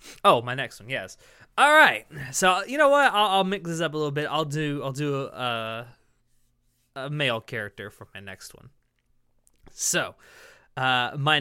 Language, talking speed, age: English, 180 wpm, 20-39